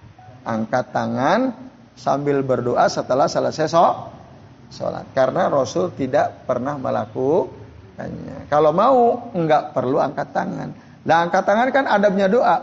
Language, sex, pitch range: Indonesian, male, 115-140 Hz